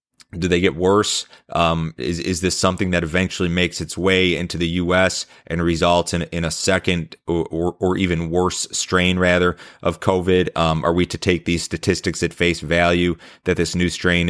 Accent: American